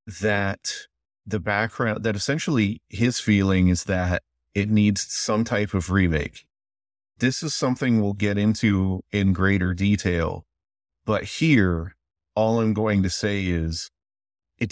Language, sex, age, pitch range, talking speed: English, male, 30-49, 90-110 Hz, 135 wpm